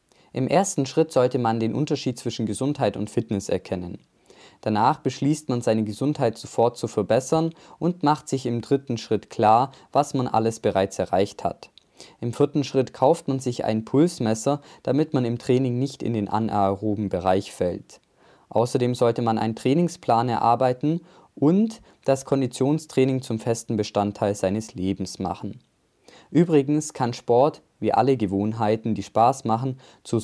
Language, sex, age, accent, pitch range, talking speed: German, male, 20-39, German, 110-140 Hz, 150 wpm